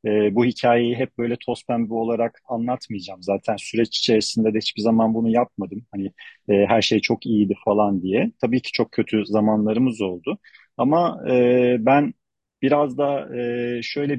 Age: 40-59